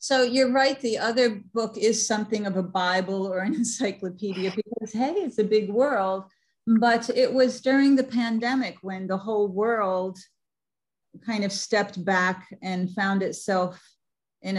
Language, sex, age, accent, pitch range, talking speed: English, female, 50-69, American, 180-225 Hz, 155 wpm